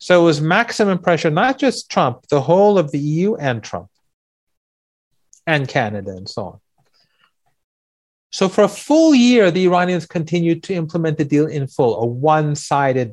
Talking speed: 165 wpm